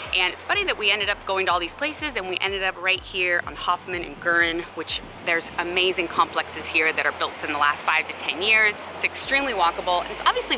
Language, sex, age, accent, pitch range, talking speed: English, female, 20-39, American, 165-210 Hz, 245 wpm